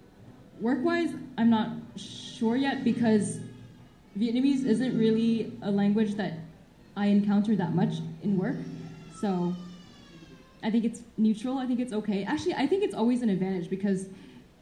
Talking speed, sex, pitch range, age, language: 145 wpm, female, 195-230 Hz, 10-29, Vietnamese